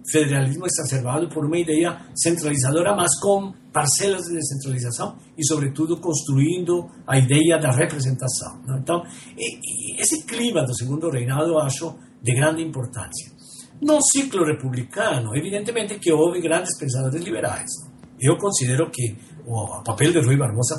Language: Portuguese